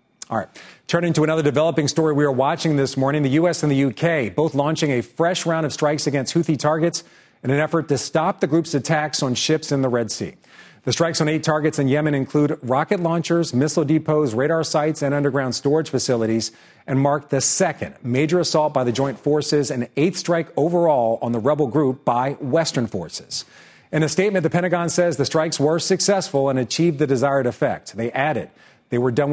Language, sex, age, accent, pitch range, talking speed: English, male, 40-59, American, 130-160 Hz, 205 wpm